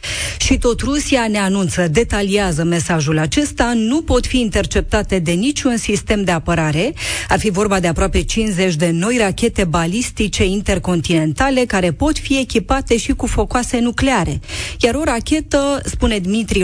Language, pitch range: Romanian, 175-235 Hz